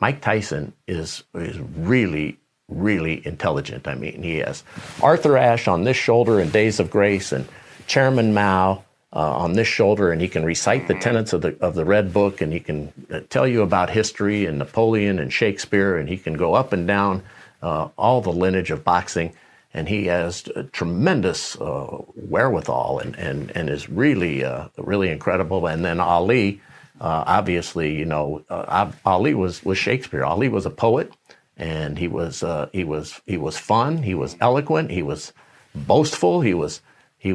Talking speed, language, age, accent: 180 wpm, English, 50-69, American